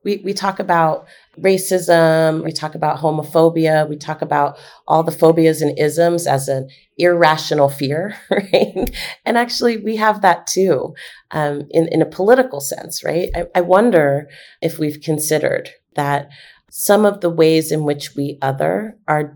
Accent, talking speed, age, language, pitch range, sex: American, 160 wpm, 30-49, English, 145-175 Hz, female